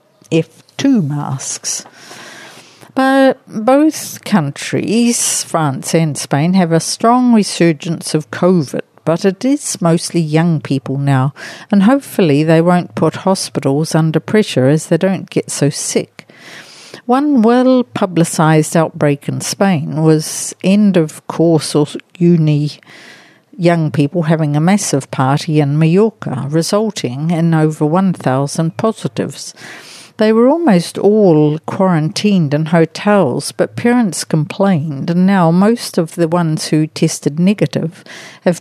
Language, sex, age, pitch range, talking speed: English, female, 60-79, 150-195 Hz, 125 wpm